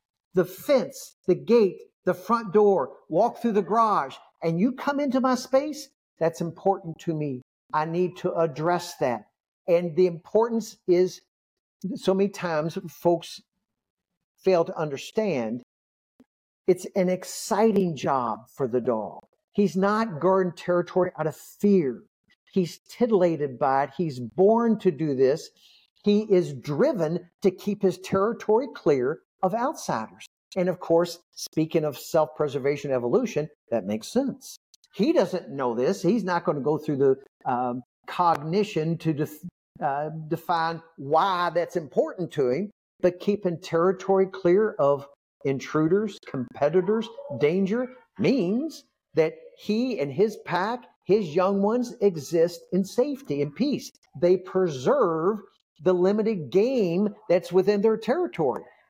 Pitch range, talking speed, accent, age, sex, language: 160-210 Hz, 135 wpm, American, 50-69, male, English